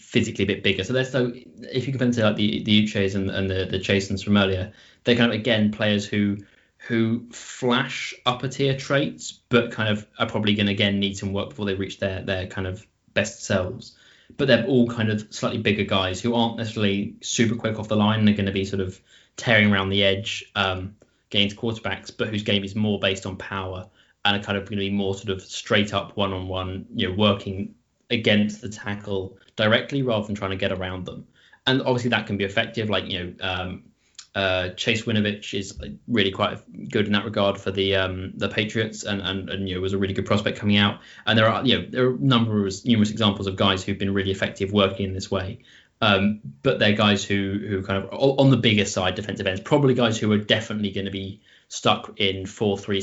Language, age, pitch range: English, 20-39, 95-110 Hz